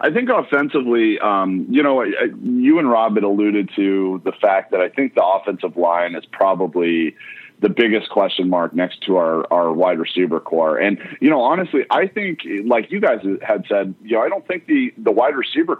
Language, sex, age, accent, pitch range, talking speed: English, male, 30-49, American, 90-110 Hz, 210 wpm